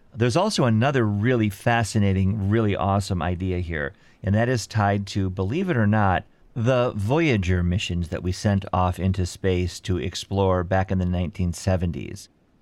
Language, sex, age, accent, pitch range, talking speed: English, male, 40-59, American, 95-110 Hz, 155 wpm